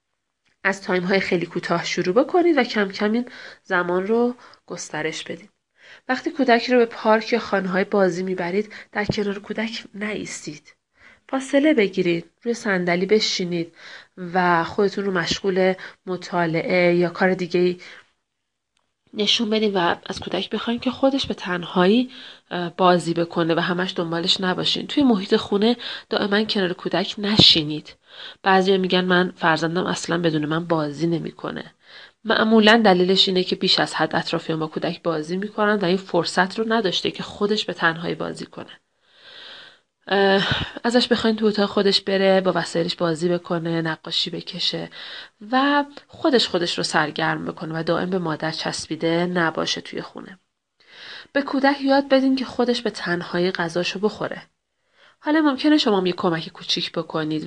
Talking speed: 145 wpm